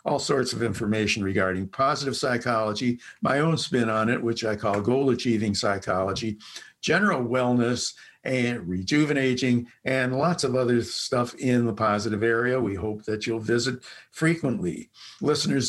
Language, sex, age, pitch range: English, male, 60-79, 115-140 Hz